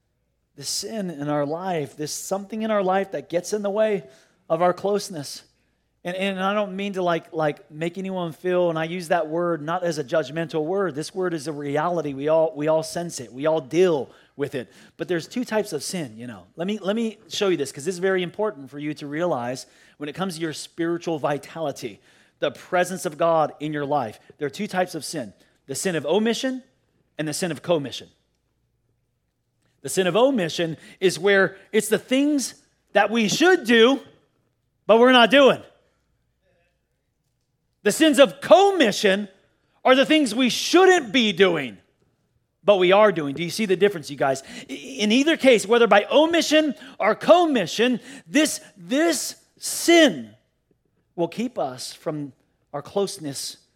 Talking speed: 185 wpm